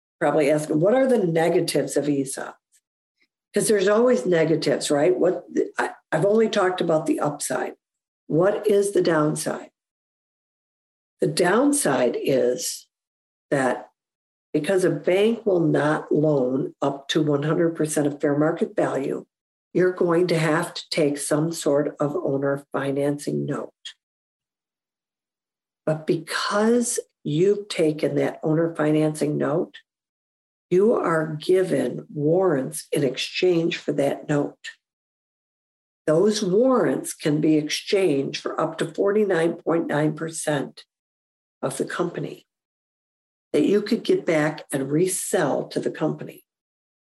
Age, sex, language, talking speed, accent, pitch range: 50-69, female, English, 115 wpm, American, 150-185 Hz